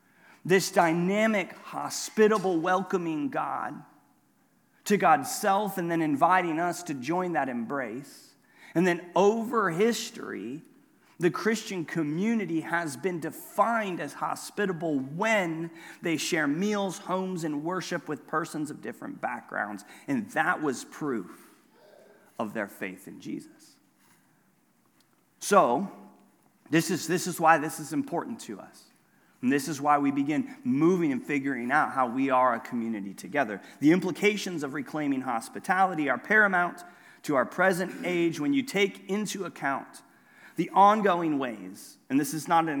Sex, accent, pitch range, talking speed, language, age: male, American, 155-205 Hz, 140 wpm, English, 40-59